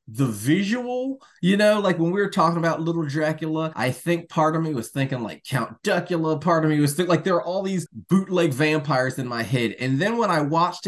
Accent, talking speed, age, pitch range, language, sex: American, 230 wpm, 20-39, 135-195 Hz, English, male